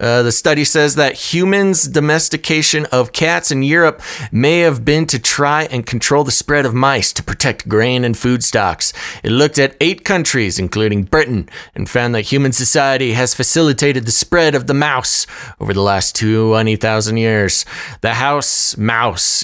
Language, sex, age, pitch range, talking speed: English, male, 30-49, 115-145 Hz, 170 wpm